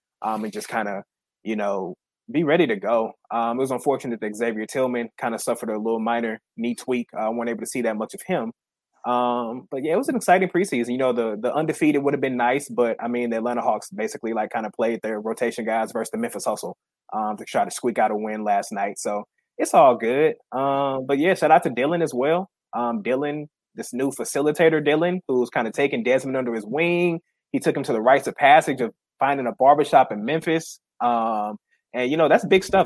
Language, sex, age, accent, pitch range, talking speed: English, male, 20-39, American, 120-145 Hz, 235 wpm